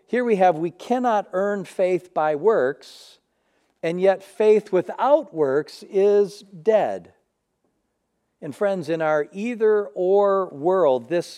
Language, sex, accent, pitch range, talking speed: English, male, American, 155-205 Hz, 125 wpm